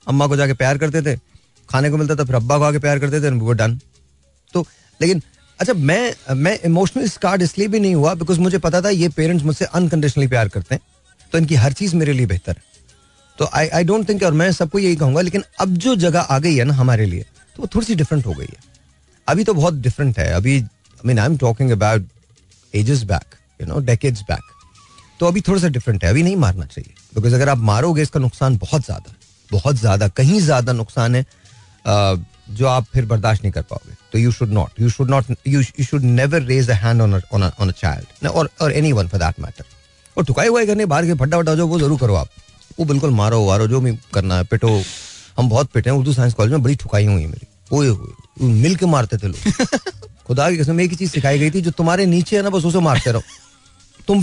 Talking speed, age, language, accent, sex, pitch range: 230 wpm, 30-49, Hindi, native, male, 110-165 Hz